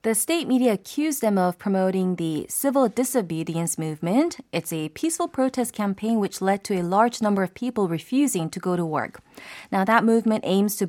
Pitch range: 170-225 Hz